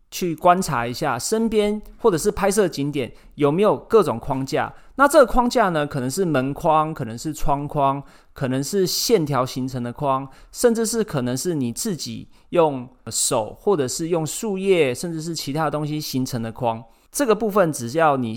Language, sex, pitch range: Chinese, male, 125-195 Hz